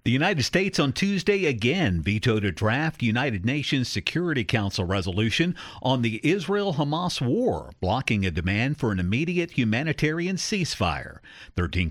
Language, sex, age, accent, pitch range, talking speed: English, male, 50-69, American, 105-150 Hz, 140 wpm